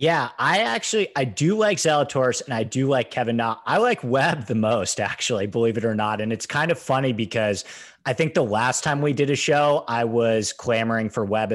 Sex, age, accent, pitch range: male, 30-49, American, 110-140 Hz